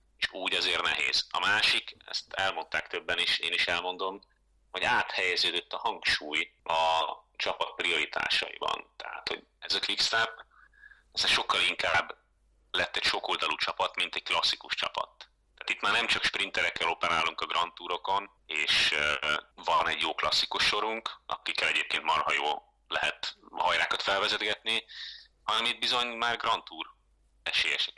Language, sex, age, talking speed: Hungarian, male, 30-49, 140 wpm